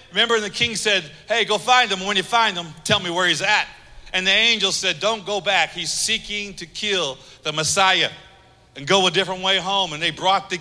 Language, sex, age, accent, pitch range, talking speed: English, male, 50-69, American, 175-225 Hz, 225 wpm